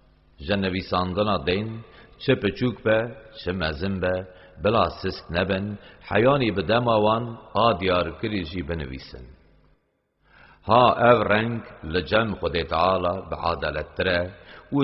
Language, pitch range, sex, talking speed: Arabic, 85-110 Hz, male, 110 wpm